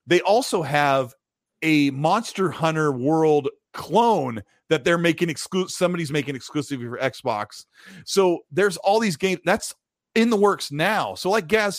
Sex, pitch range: male, 120-170 Hz